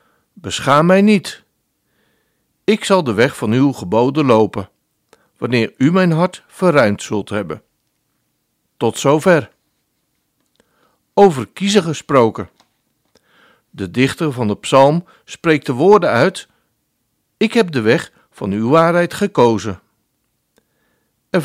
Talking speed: 115 wpm